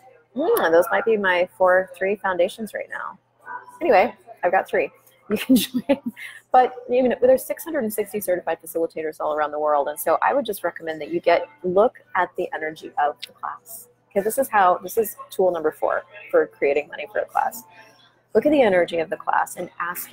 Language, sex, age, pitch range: English, female, 20-39, 170-245 Hz